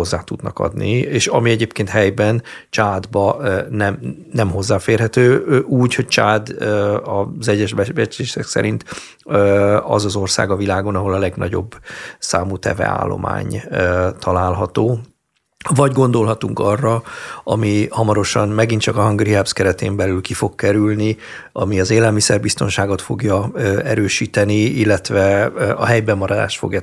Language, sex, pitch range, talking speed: Hungarian, male, 95-115 Hz, 115 wpm